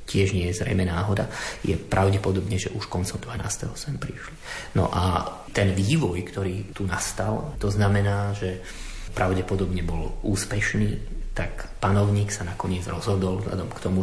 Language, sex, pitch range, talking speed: Slovak, male, 95-105 Hz, 145 wpm